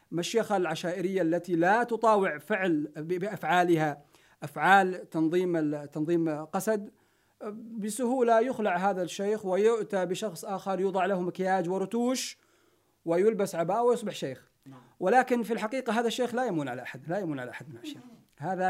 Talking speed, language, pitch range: 130 wpm, Arabic, 150-215 Hz